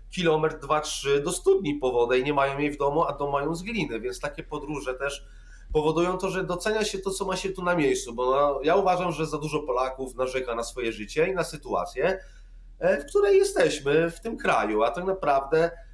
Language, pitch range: Polish, 130-180 Hz